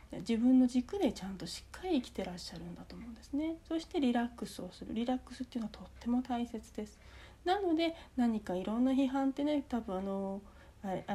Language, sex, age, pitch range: Japanese, female, 40-59, 205-270 Hz